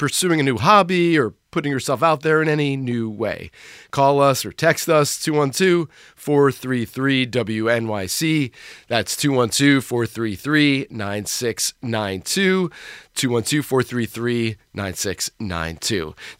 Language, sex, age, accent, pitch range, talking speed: English, male, 30-49, American, 120-165 Hz, 80 wpm